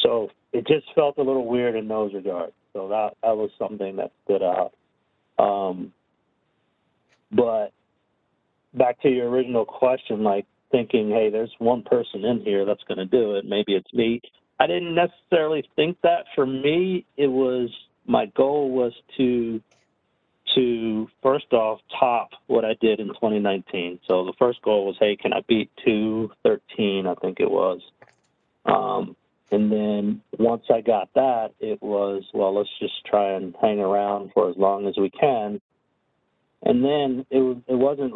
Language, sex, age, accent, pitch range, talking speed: English, male, 50-69, American, 100-130 Hz, 165 wpm